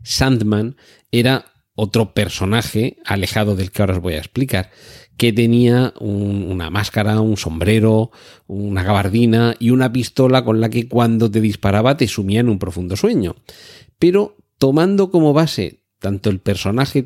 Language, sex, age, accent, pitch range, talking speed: Spanish, male, 40-59, Spanish, 100-125 Hz, 150 wpm